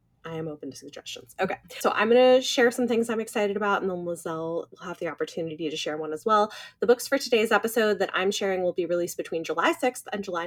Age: 20-39